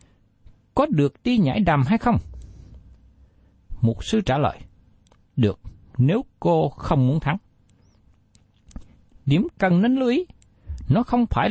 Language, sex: Vietnamese, male